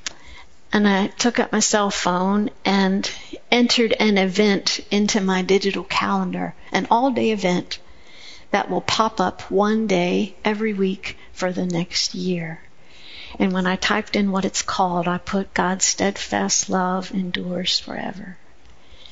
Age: 60-79